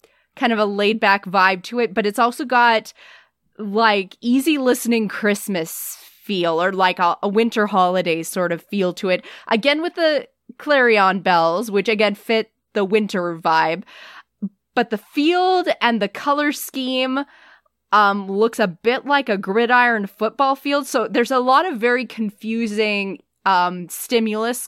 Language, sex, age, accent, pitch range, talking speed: English, female, 20-39, American, 195-245 Hz, 155 wpm